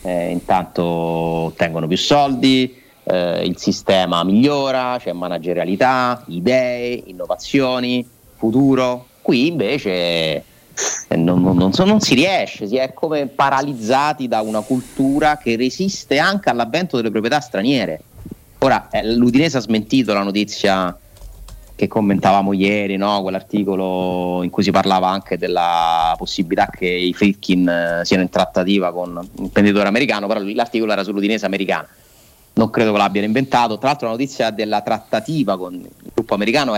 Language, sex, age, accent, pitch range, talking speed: Italian, male, 30-49, native, 95-130 Hz, 145 wpm